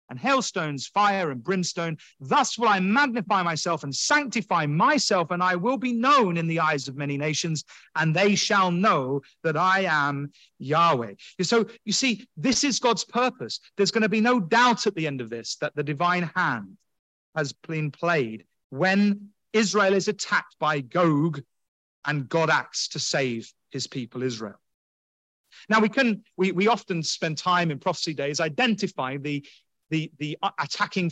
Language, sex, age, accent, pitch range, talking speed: English, male, 30-49, British, 145-210 Hz, 170 wpm